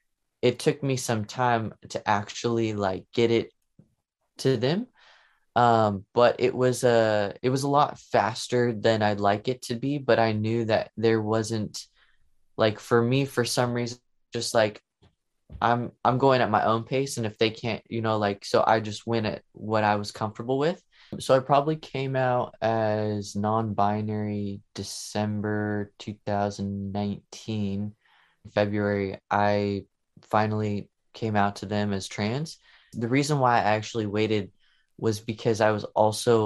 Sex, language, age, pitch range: male, English, 20-39, 105-120 Hz